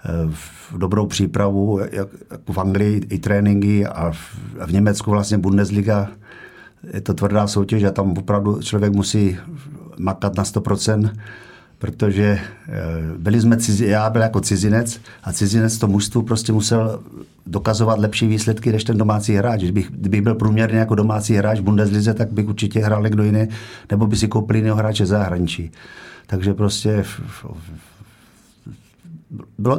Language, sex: Czech, male